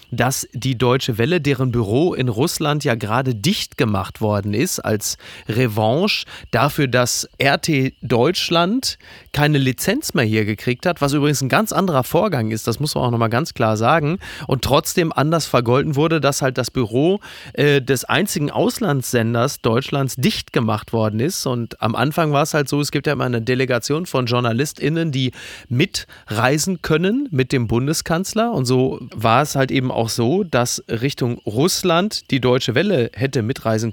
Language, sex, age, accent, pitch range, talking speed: German, male, 30-49, German, 120-155 Hz, 170 wpm